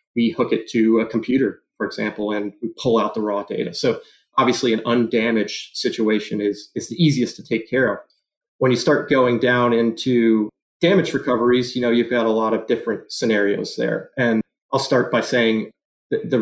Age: 30-49